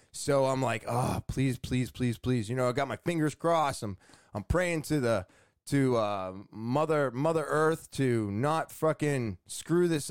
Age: 20-39